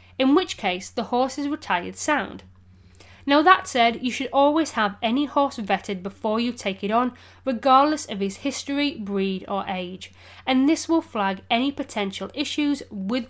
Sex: female